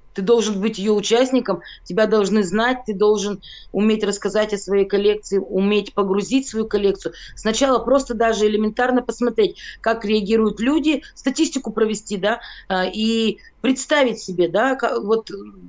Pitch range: 195-245 Hz